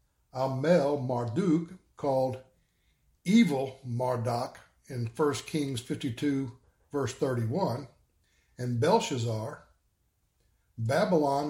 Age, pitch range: 60-79, 120-155 Hz